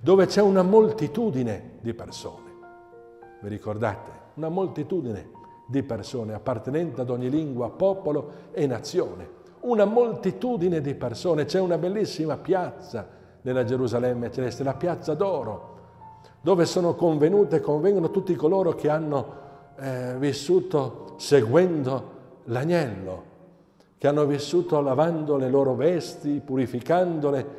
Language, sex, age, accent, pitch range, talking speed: Italian, male, 60-79, native, 120-155 Hz, 115 wpm